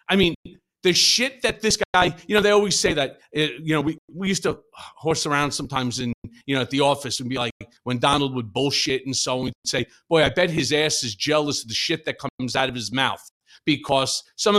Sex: male